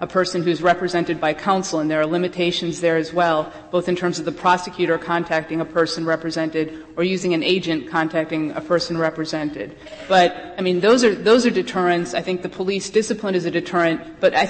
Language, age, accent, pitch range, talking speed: English, 30-49, American, 175-230 Hz, 205 wpm